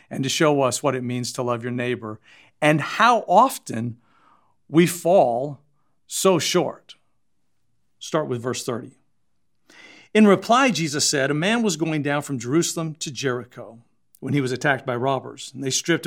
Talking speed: 165 wpm